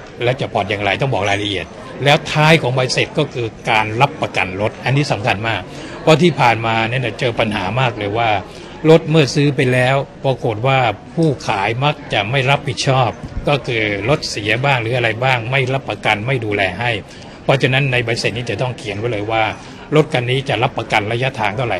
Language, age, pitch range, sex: Thai, 60-79, 105-135 Hz, male